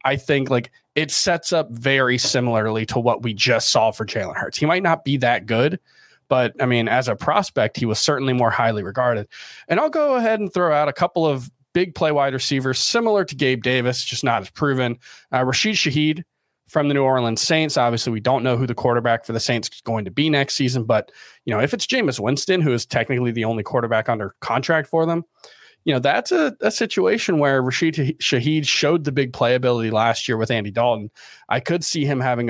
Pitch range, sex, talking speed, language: 115-145 Hz, male, 220 wpm, English